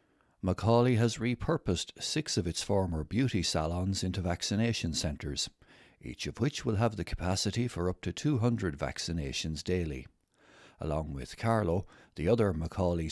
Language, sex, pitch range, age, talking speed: English, male, 80-105 Hz, 60-79, 140 wpm